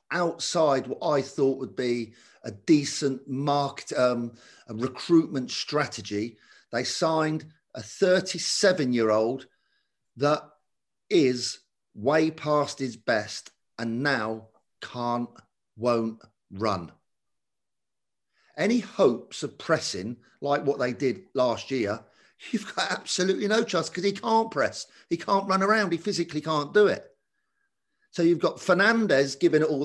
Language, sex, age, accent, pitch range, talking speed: English, male, 50-69, British, 125-180 Hz, 125 wpm